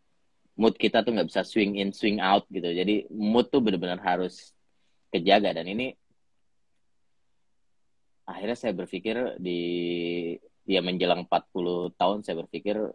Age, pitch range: 20-39, 85-100 Hz